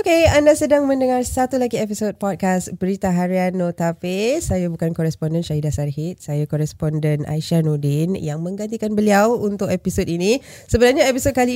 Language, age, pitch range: Malay, 20-39, 165-225 Hz